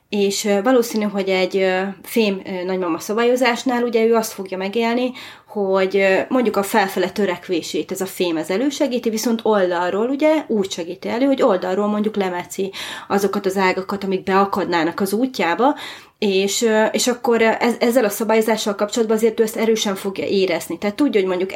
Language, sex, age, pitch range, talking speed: Hungarian, female, 30-49, 185-220 Hz, 160 wpm